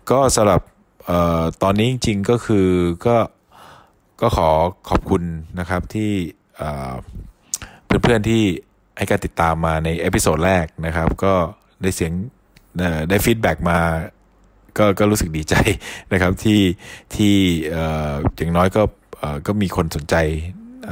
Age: 20-39